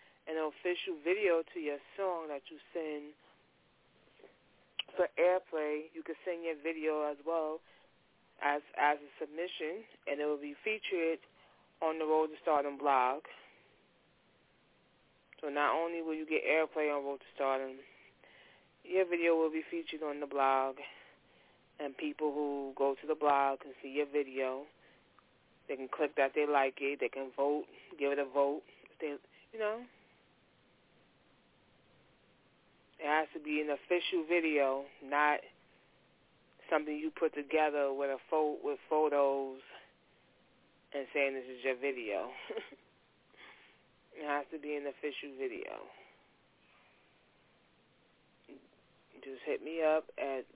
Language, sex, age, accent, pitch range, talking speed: English, female, 20-39, American, 140-160 Hz, 135 wpm